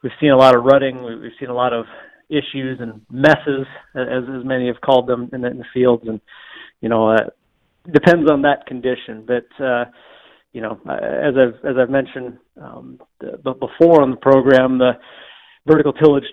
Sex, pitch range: male, 120-140 Hz